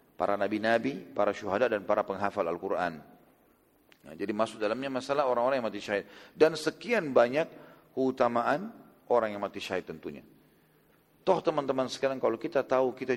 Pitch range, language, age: 115-135 Hz, English, 40-59